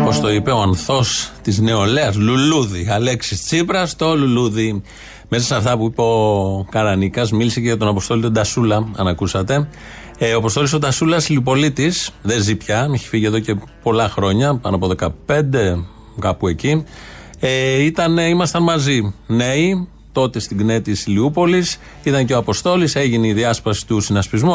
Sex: male